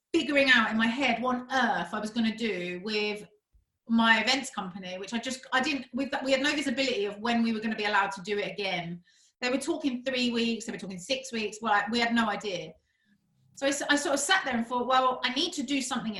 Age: 30-49